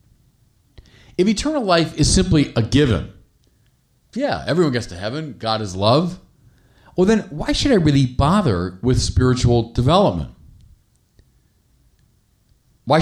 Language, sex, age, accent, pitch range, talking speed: English, male, 40-59, American, 110-160 Hz, 120 wpm